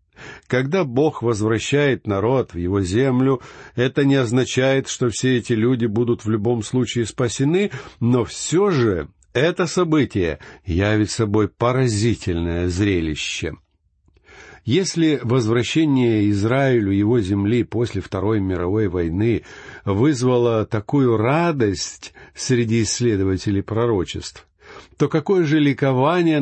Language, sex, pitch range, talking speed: Russian, male, 105-135 Hz, 105 wpm